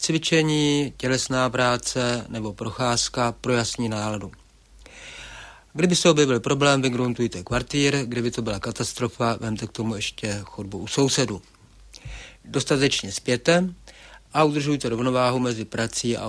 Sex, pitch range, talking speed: male, 110-140 Hz, 120 wpm